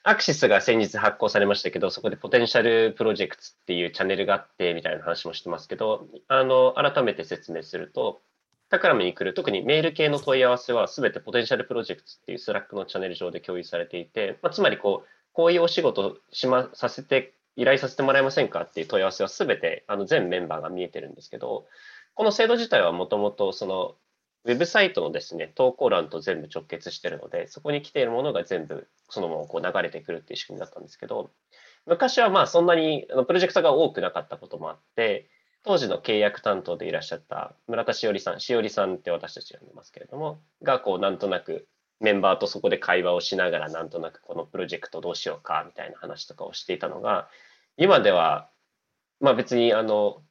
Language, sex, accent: English, male, Japanese